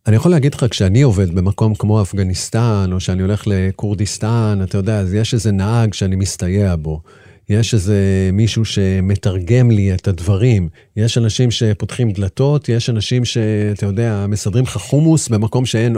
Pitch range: 100-130 Hz